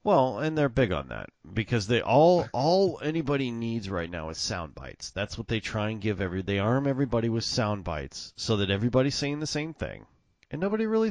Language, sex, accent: English, male, American